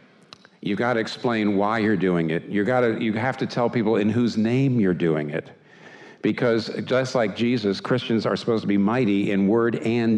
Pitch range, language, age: 85-115 Hz, English, 50-69